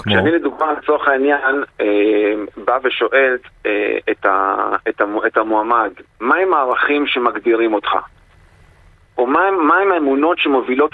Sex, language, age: male, Hebrew, 40-59